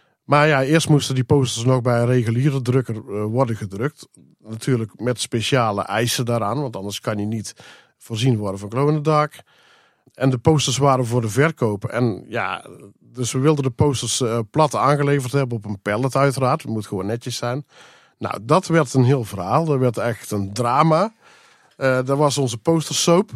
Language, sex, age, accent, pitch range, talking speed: Dutch, male, 50-69, Dutch, 120-145 Hz, 175 wpm